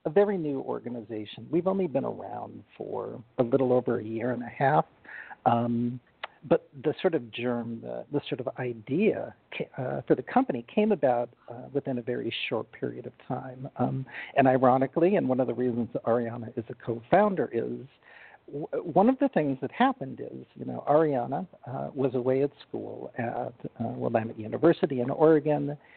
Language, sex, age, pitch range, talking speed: English, male, 50-69, 120-150 Hz, 180 wpm